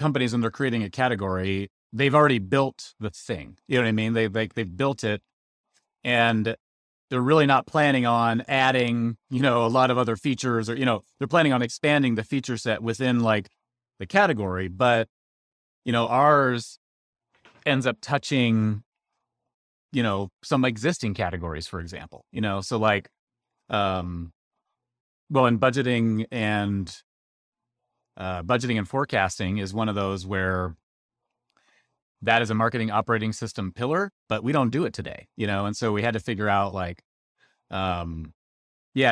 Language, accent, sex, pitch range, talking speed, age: English, American, male, 95-125 Hz, 165 wpm, 30-49